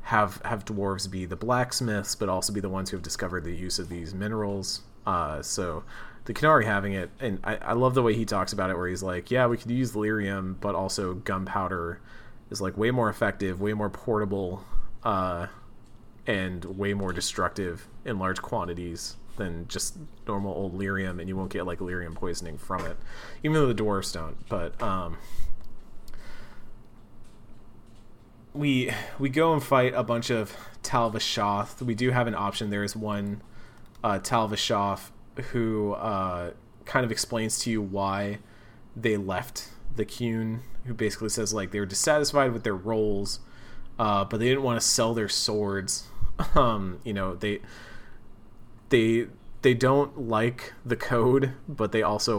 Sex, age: male, 30-49